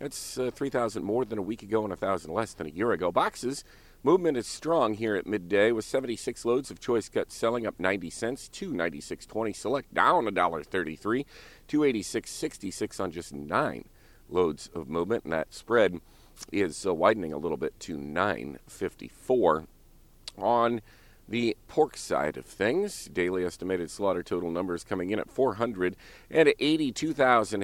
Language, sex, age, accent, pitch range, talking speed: English, male, 40-59, American, 95-130 Hz, 155 wpm